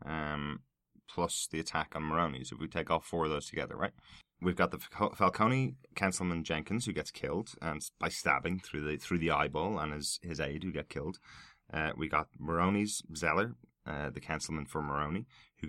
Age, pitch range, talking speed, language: 20-39, 75-95 Hz, 195 wpm, English